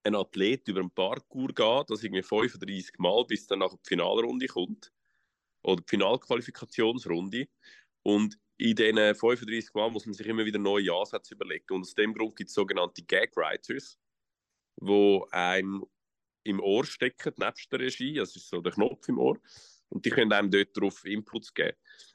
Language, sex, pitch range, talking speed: German, male, 100-110 Hz, 170 wpm